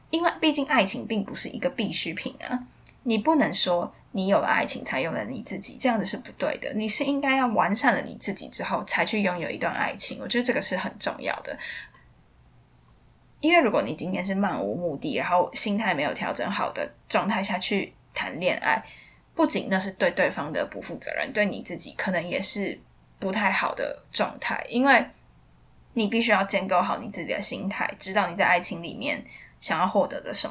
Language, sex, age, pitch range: Chinese, female, 10-29, 185-250 Hz